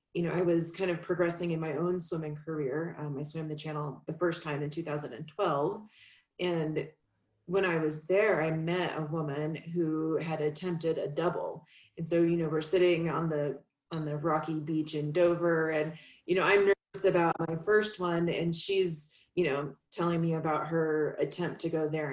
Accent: American